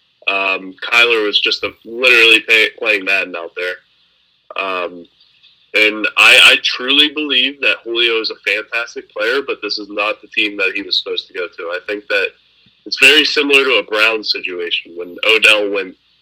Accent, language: American, English